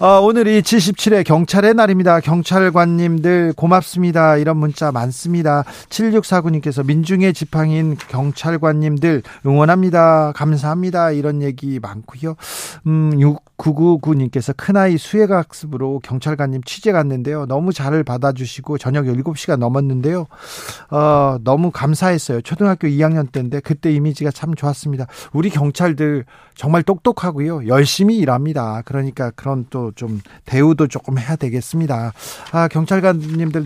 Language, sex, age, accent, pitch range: Korean, male, 40-59, native, 140-175 Hz